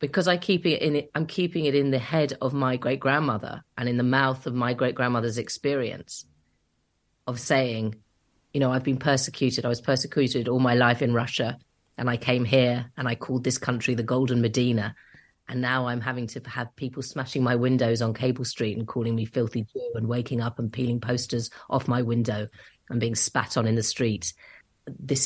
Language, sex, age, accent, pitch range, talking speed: English, female, 30-49, British, 120-145 Hz, 200 wpm